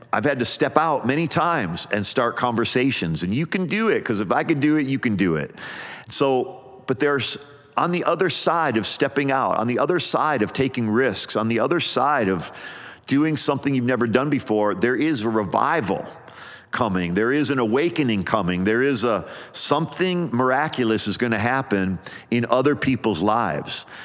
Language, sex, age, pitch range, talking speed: English, male, 50-69, 105-135 Hz, 190 wpm